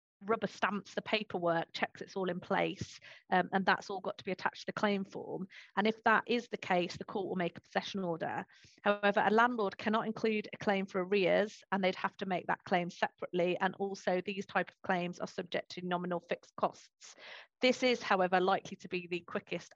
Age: 40-59